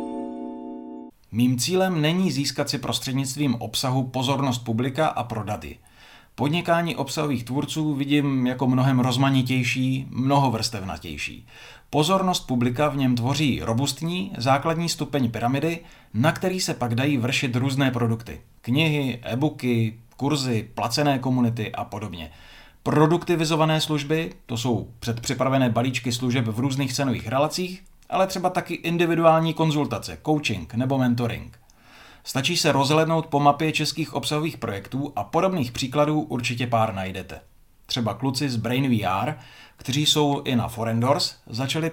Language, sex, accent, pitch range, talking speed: Czech, male, native, 120-150 Hz, 125 wpm